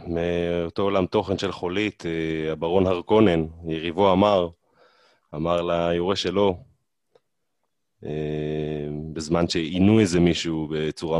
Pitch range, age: 80-90 Hz, 30-49